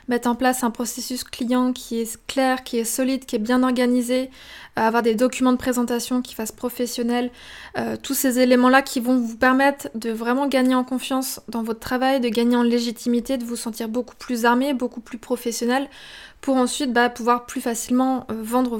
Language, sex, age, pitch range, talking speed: French, female, 20-39, 240-260 Hz, 190 wpm